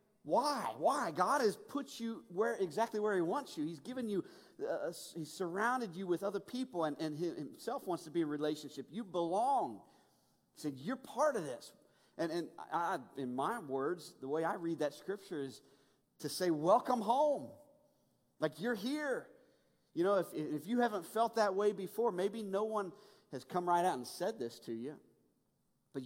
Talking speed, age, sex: 195 wpm, 40-59, male